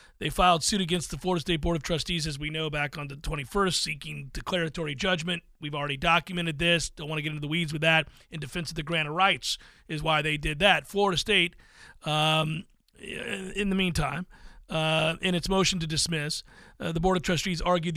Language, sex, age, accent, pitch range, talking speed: English, male, 40-59, American, 165-230 Hz, 210 wpm